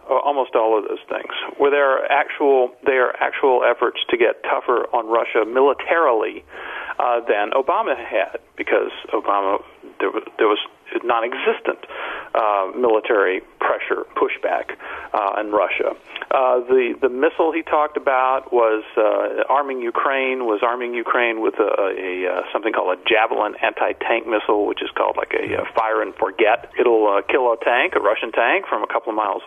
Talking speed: 155 wpm